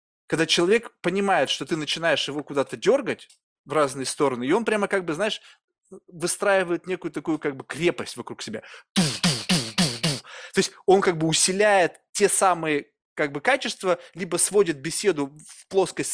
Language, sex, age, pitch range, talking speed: Russian, male, 20-39, 145-195 Hz, 155 wpm